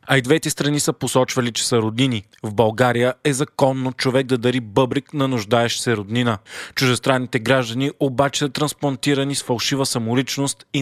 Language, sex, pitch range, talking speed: Bulgarian, male, 120-140 Hz, 165 wpm